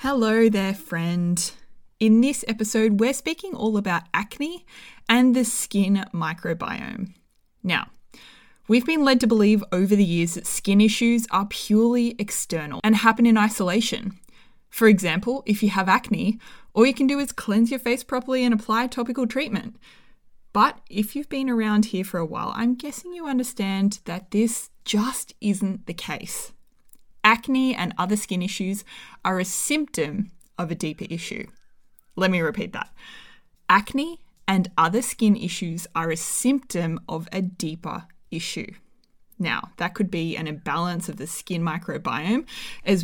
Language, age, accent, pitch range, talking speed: English, 20-39, Australian, 180-235 Hz, 155 wpm